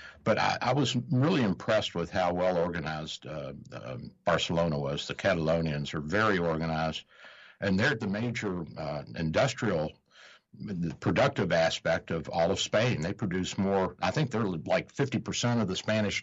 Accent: American